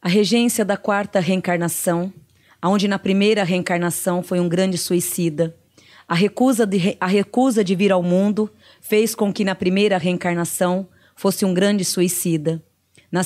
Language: Portuguese